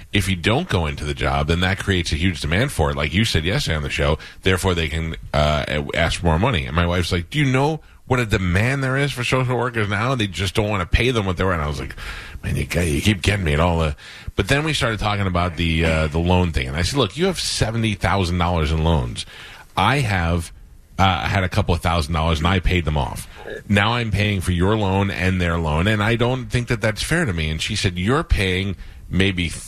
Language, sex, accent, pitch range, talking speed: English, male, American, 80-105 Hz, 260 wpm